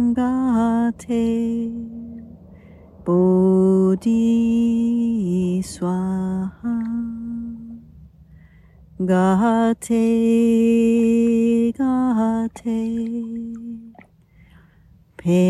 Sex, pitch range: female, 190-230 Hz